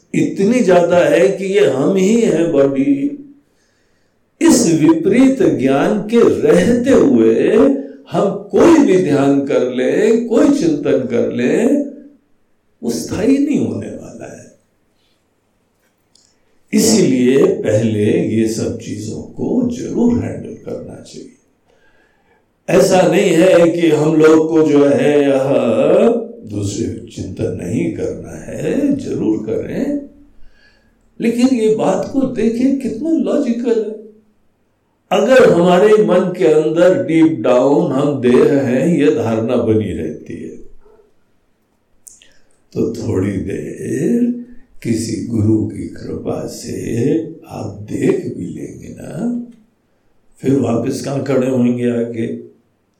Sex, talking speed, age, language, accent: male, 110 wpm, 60-79, Hindi, native